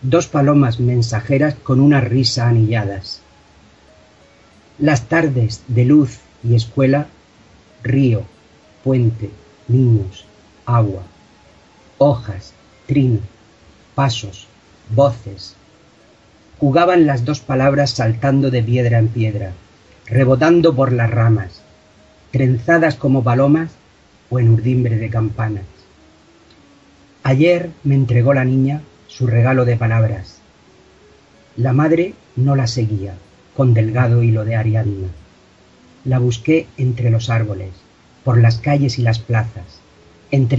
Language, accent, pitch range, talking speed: Spanish, Spanish, 105-135 Hz, 110 wpm